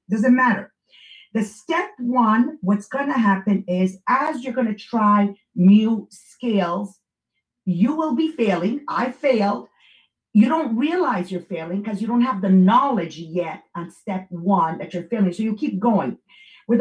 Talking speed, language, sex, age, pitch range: 165 wpm, English, female, 50-69, 185-235 Hz